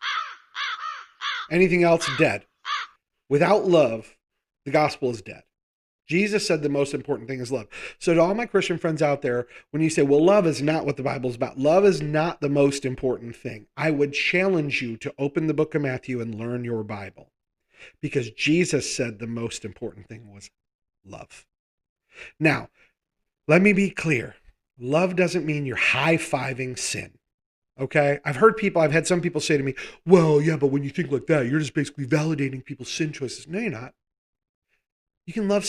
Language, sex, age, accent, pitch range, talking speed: English, male, 40-59, American, 125-165 Hz, 185 wpm